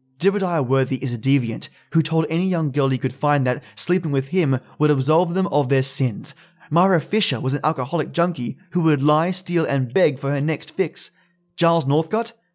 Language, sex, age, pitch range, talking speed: English, male, 20-39, 140-180 Hz, 195 wpm